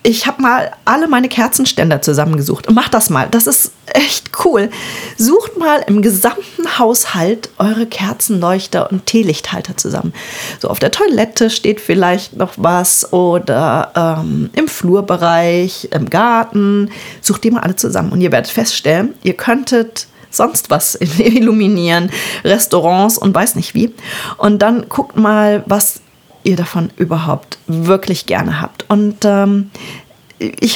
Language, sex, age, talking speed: German, female, 30-49, 140 wpm